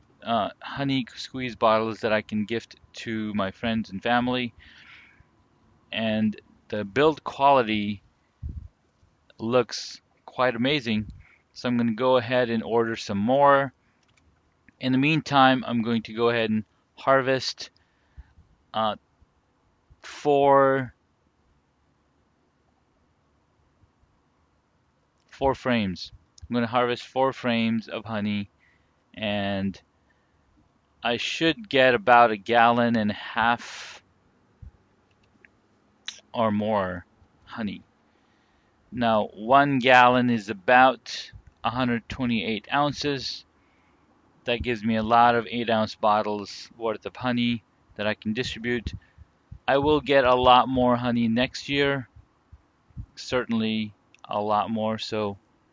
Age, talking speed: 30-49, 110 wpm